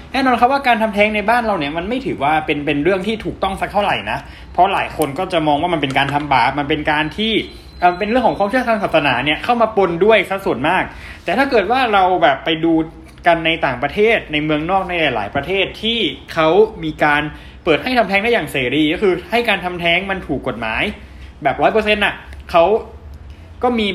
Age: 20-39